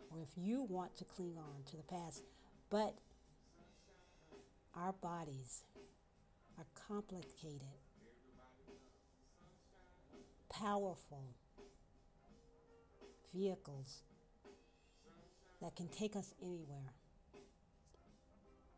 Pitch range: 135-185 Hz